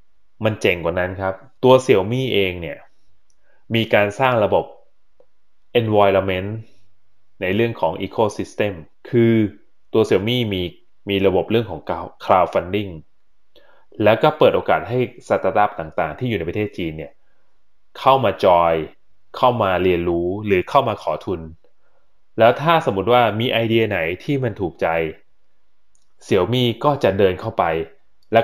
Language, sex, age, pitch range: Thai, male, 20-39, 95-120 Hz